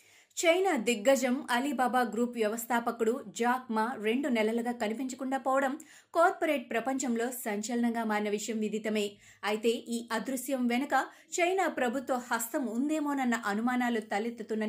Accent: native